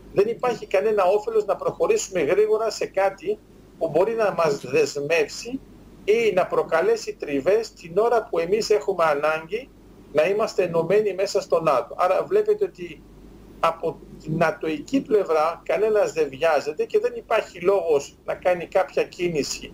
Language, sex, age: Greek, male, 50-69